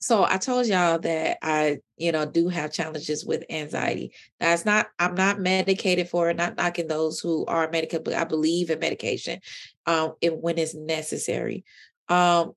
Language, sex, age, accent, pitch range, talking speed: English, female, 30-49, American, 165-235 Hz, 175 wpm